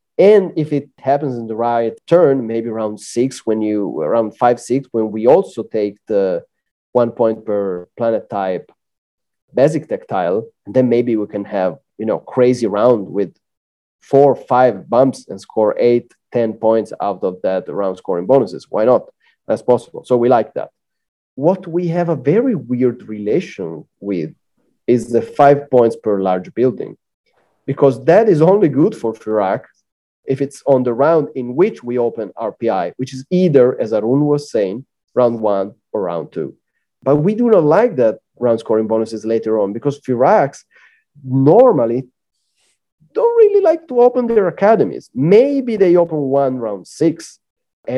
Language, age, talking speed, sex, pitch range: English, 30-49, 165 wpm, male, 110-150 Hz